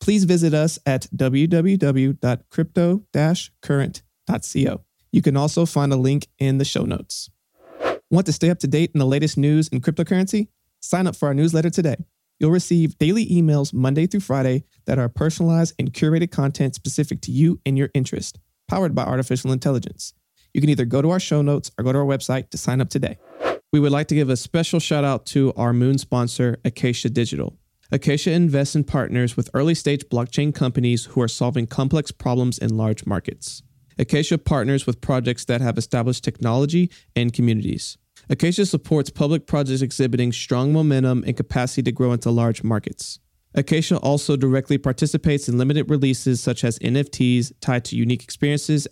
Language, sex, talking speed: English, male, 175 wpm